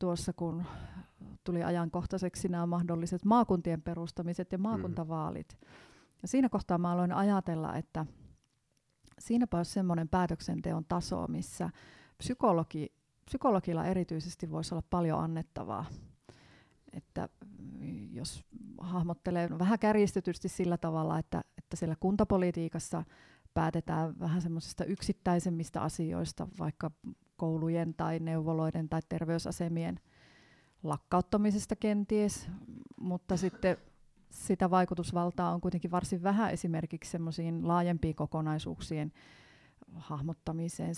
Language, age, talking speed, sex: Finnish, 30-49, 95 wpm, female